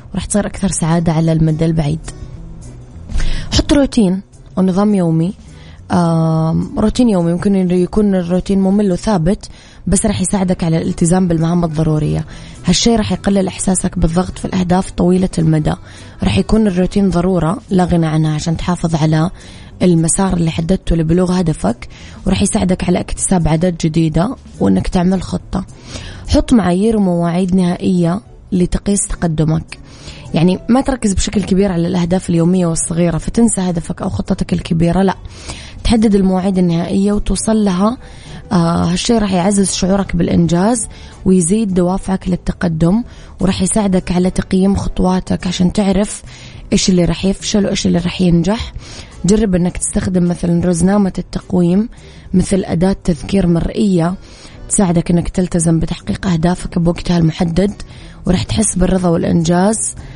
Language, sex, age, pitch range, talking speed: Arabic, female, 20-39, 170-195 Hz, 130 wpm